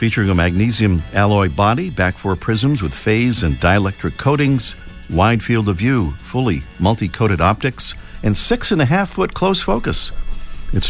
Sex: male